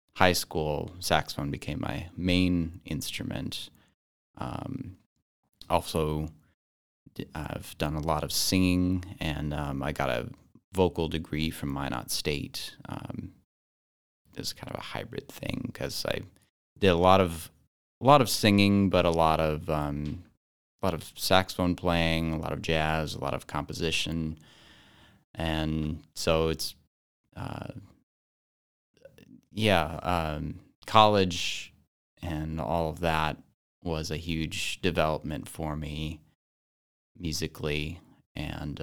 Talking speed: 120 wpm